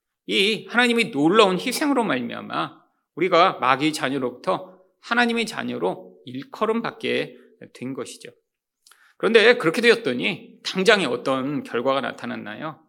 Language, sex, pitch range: Korean, male, 160-265 Hz